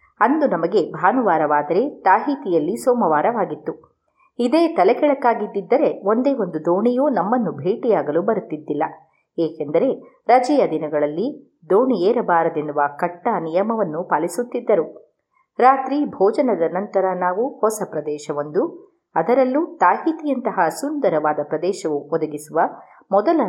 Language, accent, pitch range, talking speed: Kannada, native, 160-250 Hz, 80 wpm